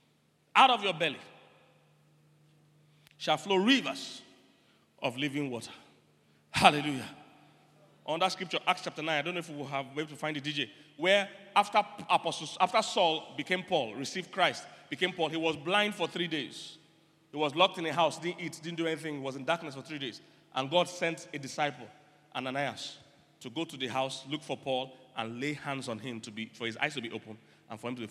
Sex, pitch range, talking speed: male, 135-175 Hz, 205 wpm